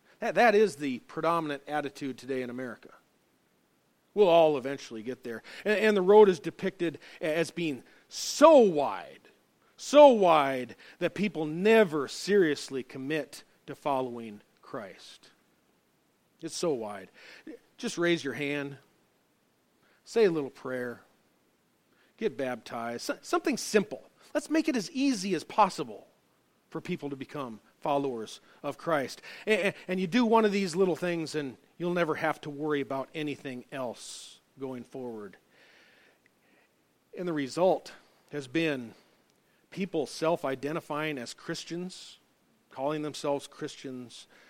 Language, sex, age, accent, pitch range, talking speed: English, male, 40-59, American, 135-185 Hz, 125 wpm